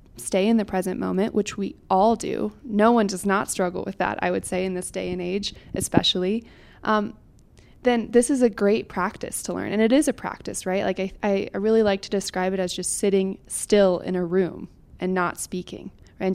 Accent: American